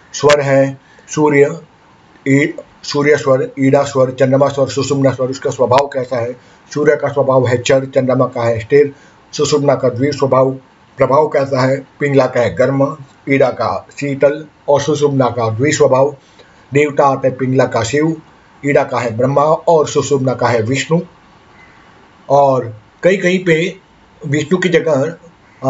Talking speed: 145 wpm